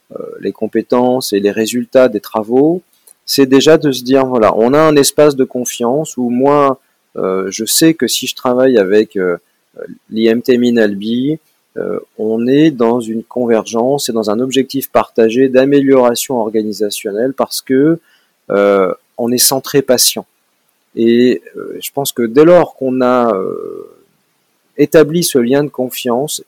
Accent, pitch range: French, 110-145 Hz